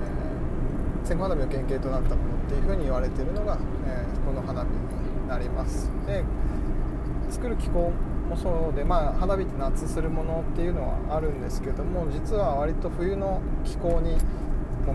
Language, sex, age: Japanese, male, 20-39